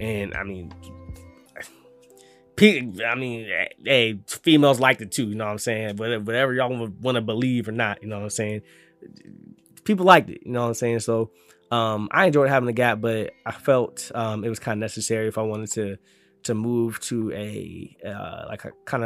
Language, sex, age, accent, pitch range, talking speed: English, male, 20-39, American, 105-125 Hz, 205 wpm